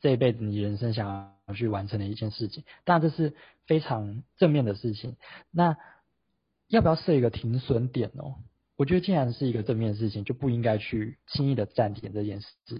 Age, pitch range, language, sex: 20-39, 110-140 Hz, Chinese, male